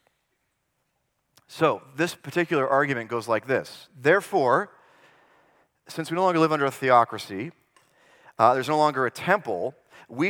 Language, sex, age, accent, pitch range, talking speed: English, male, 40-59, American, 120-155 Hz, 135 wpm